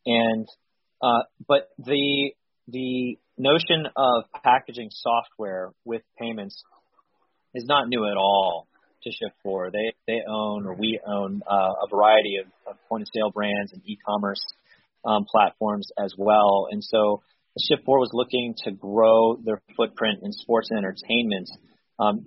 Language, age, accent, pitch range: English, 30-49, American, 100-120 Hz